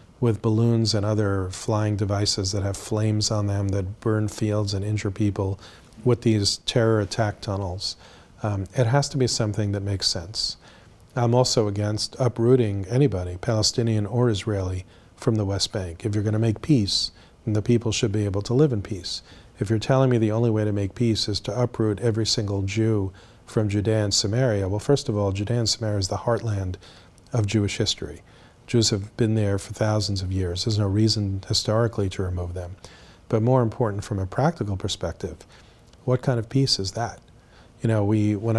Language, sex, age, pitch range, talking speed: English, male, 40-59, 100-115 Hz, 190 wpm